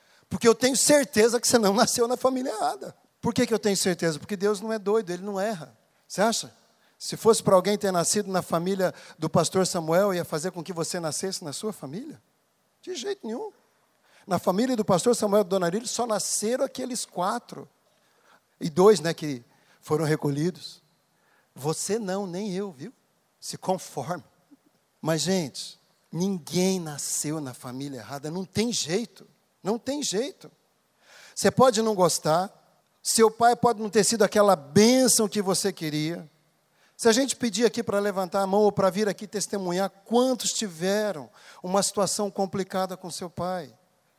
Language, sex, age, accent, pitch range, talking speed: Portuguese, male, 50-69, Brazilian, 180-225 Hz, 170 wpm